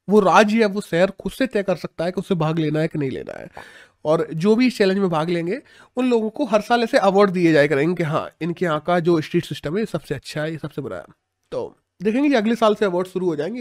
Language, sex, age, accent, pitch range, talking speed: Hindi, male, 30-49, native, 160-220 Hz, 270 wpm